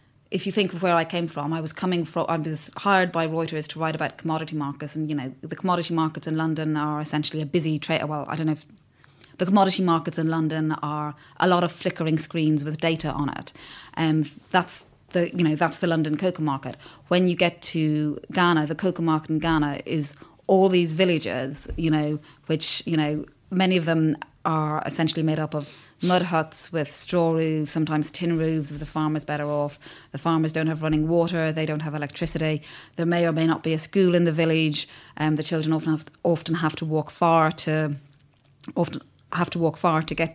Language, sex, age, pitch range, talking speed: English, female, 30-49, 155-170 Hz, 220 wpm